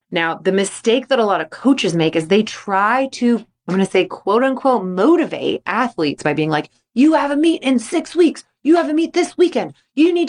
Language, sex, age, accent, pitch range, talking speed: English, female, 20-39, American, 175-265 Hz, 220 wpm